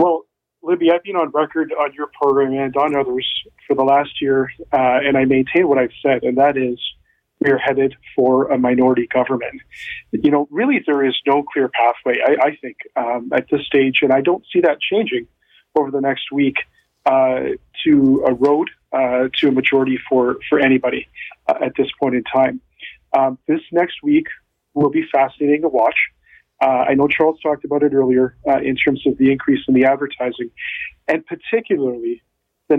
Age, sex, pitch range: 40-59, male, 130-155 Hz